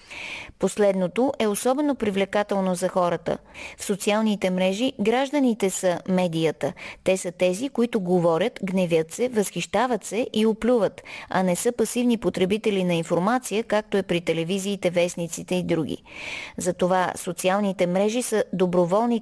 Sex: female